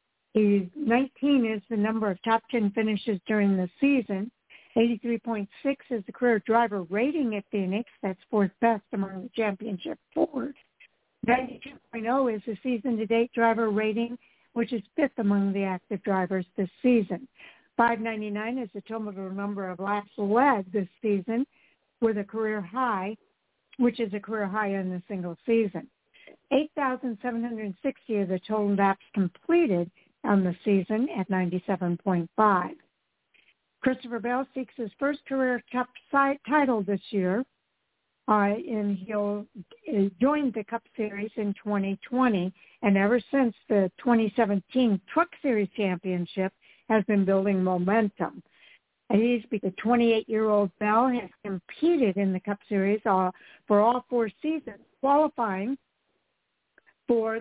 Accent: American